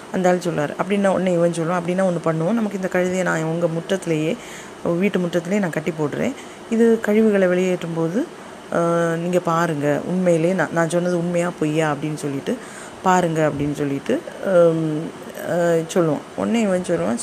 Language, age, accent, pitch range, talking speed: Tamil, 20-39, native, 160-195 Hz, 145 wpm